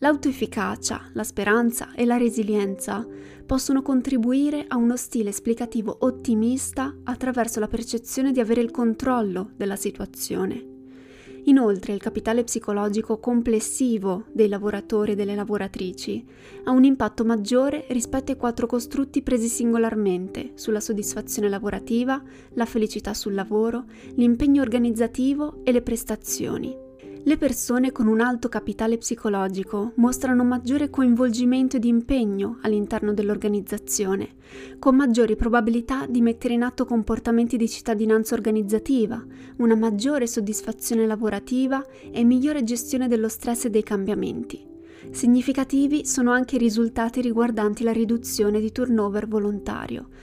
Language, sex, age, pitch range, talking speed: Italian, female, 20-39, 210-250 Hz, 120 wpm